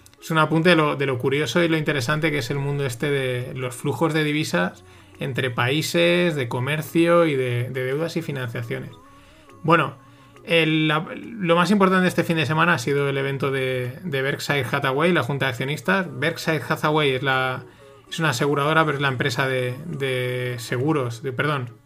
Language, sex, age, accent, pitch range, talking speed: Spanish, male, 30-49, Spanish, 130-160 Hz, 170 wpm